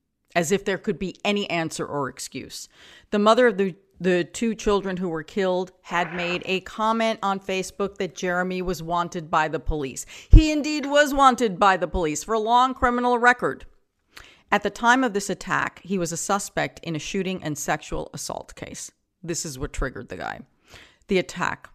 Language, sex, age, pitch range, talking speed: English, female, 40-59, 155-190 Hz, 190 wpm